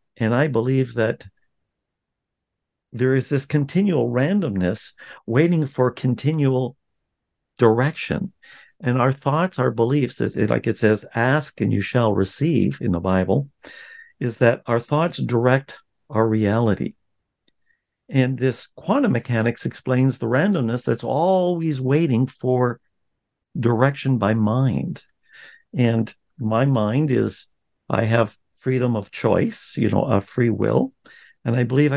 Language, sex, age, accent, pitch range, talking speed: English, male, 50-69, American, 115-135 Hz, 125 wpm